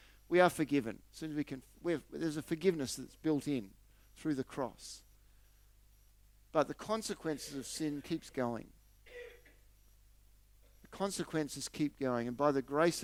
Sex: male